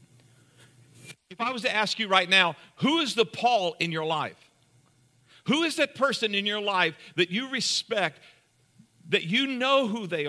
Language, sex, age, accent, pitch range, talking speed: English, male, 50-69, American, 125-190 Hz, 175 wpm